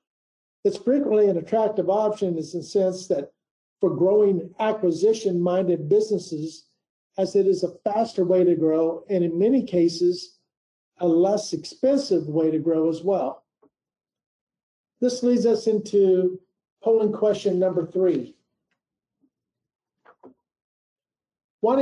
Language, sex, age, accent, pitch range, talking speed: English, male, 50-69, American, 175-215 Hz, 115 wpm